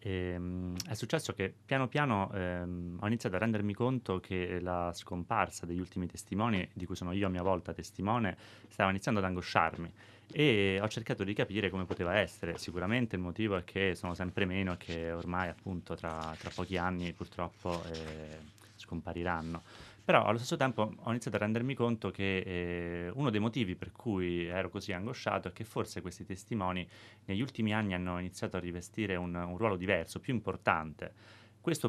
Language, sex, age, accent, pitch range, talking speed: Italian, male, 30-49, native, 90-105 Hz, 180 wpm